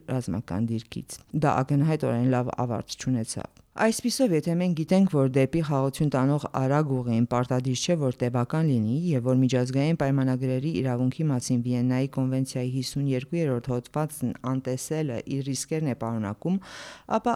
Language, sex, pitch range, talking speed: English, female, 125-155 Hz, 140 wpm